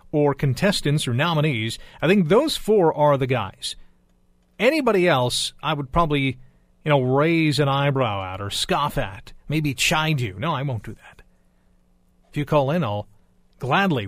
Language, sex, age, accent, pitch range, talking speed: English, male, 40-59, American, 100-160 Hz, 165 wpm